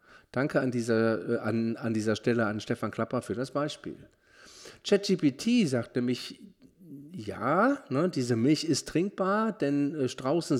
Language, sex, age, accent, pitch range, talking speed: German, male, 40-59, German, 115-155 Hz, 140 wpm